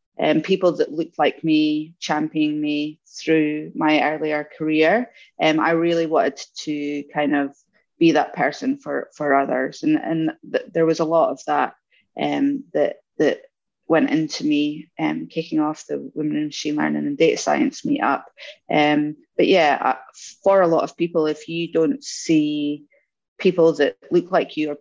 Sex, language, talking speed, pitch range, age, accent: female, English, 175 wpm, 150-190 Hz, 20-39, British